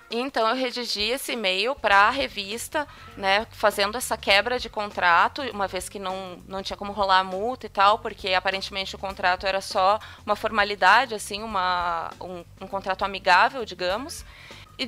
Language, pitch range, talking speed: Portuguese, 205-275 Hz, 170 wpm